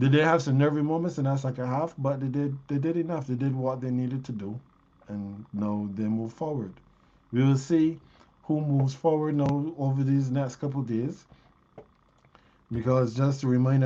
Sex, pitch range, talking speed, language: male, 120-150 Hz, 200 wpm, English